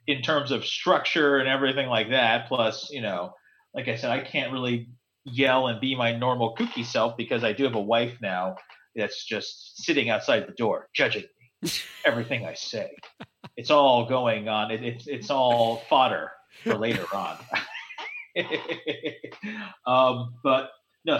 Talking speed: 160 wpm